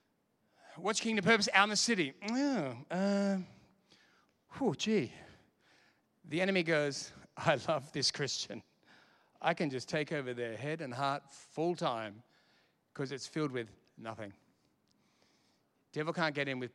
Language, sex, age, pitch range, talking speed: English, male, 40-59, 135-185 Hz, 135 wpm